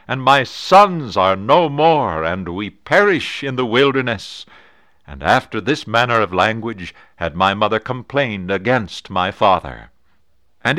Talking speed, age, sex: 145 wpm, 60-79, male